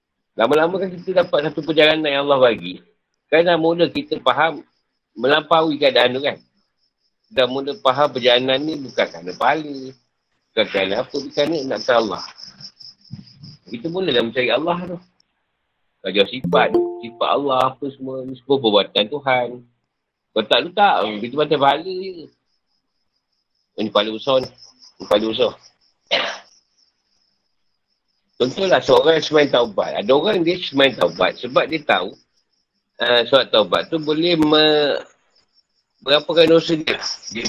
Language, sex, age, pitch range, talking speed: Malay, male, 50-69, 120-180 Hz, 130 wpm